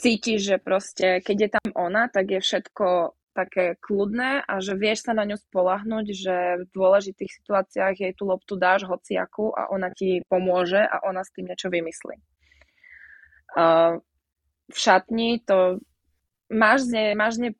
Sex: female